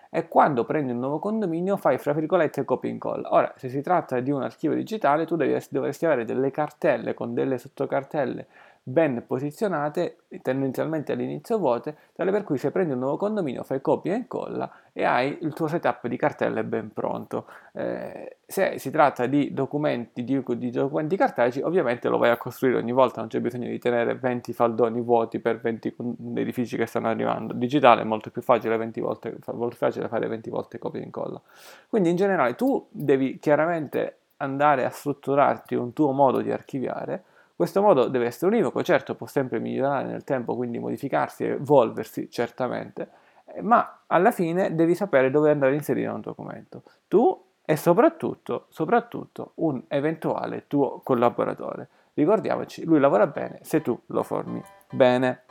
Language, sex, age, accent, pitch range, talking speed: Italian, male, 20-39, native, 120-160 Hz, 175 wpm